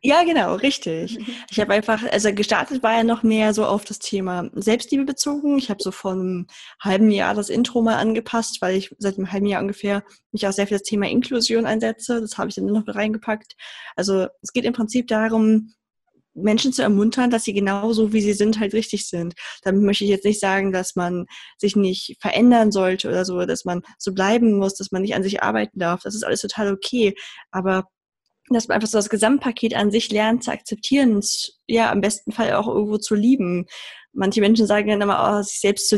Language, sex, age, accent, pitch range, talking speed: German, female, 20-39, German, 195-230 Hz, 215 wpm